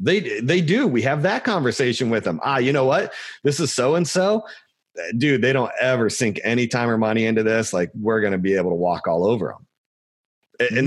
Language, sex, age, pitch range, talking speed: English, male, 30-49, 105-170 Hz, 215 wpm